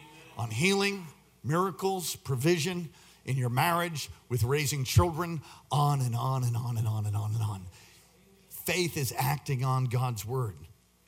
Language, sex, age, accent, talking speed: English, male, 50-69, American, 145 wpm